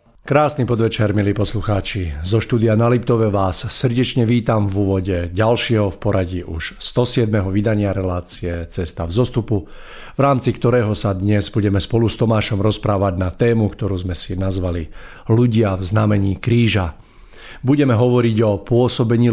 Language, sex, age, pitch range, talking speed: Slovak, male, 50-69, 95-115 Hz, 145 wpm